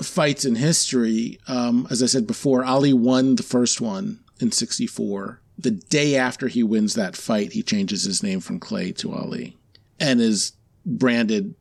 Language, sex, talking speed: English, male, 170 wpm